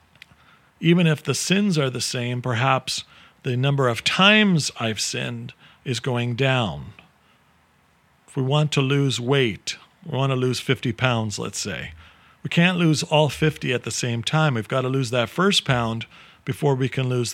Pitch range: 125-150 Hz